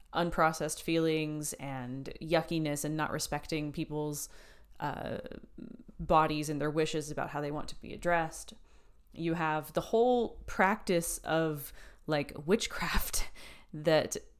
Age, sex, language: 20-39, female, English